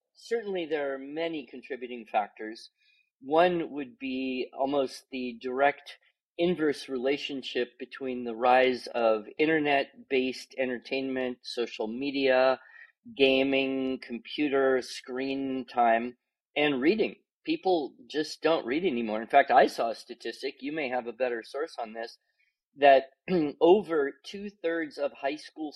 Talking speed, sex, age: 125 wpm, male, 40-59